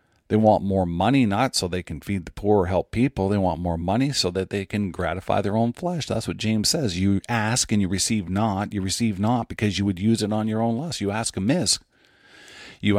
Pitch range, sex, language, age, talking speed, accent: 95-120 Hz, male, English, 50-69, 240 wpm, American